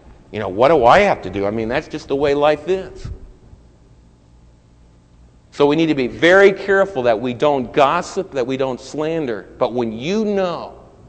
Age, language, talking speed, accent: 50-69, English, 190 wpm, American